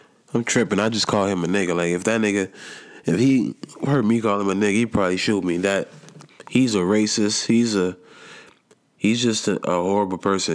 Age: 20-39